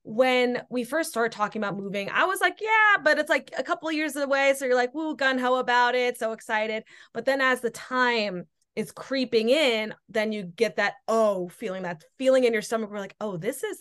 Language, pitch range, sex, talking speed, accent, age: English, 190-245 Hz, female, 230 wpm, American, 20-39